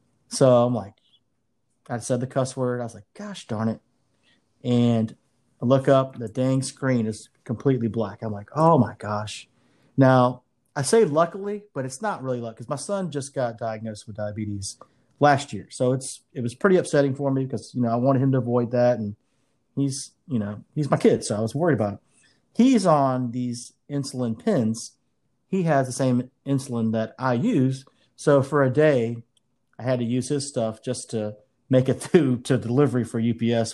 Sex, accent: male, American